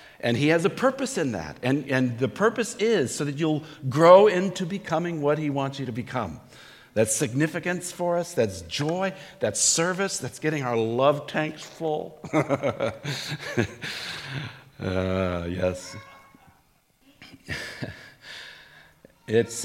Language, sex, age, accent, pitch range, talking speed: English, male, 60-79, American, 120-160 Hz, 125 wpm